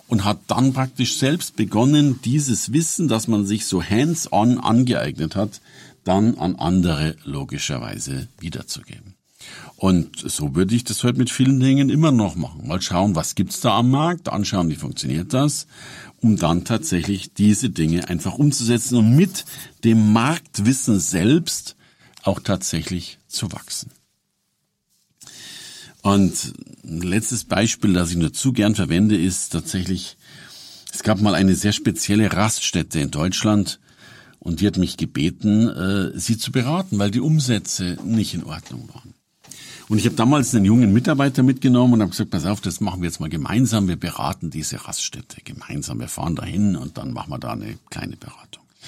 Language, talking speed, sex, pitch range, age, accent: German, 160 wpm, male, 95-125 Hz, 50-69, German